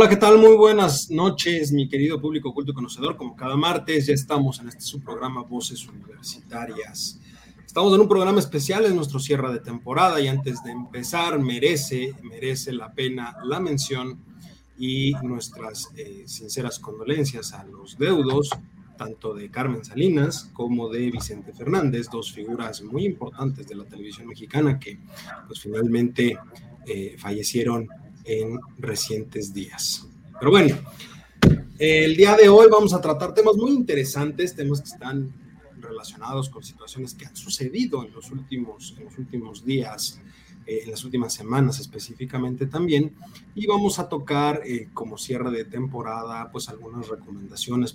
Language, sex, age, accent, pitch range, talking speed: Spanish, male, 30-49, Mexican, 120-155 Hz, 155 wpm